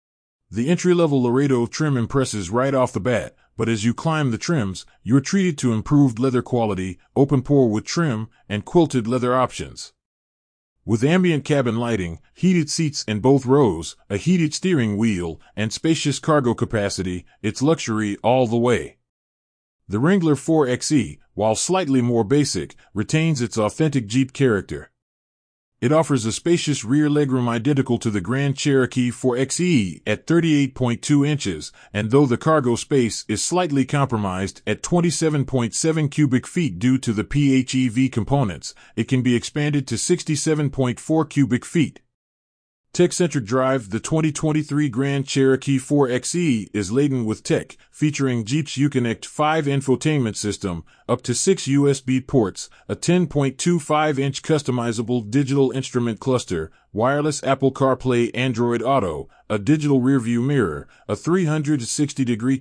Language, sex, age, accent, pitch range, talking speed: English, male, 30-49, American, 115-145 Hz, 135 wpm